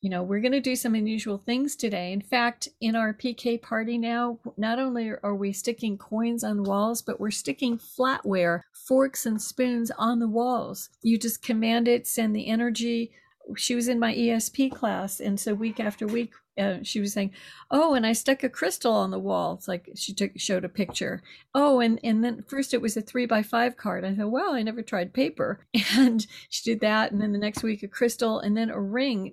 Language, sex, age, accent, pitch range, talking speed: English, female, 50-69, American, 205-245 Hz, 215 wpm